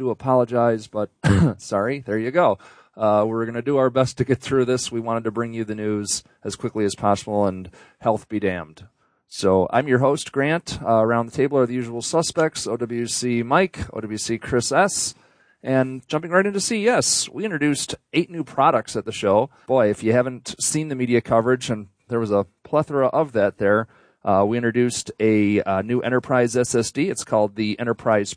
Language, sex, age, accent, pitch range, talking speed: English, male, 40-59, American, 110-135 Hz, 195 wpm